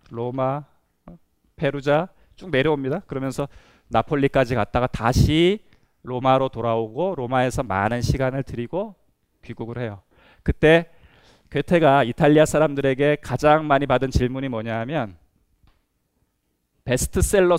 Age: 20-39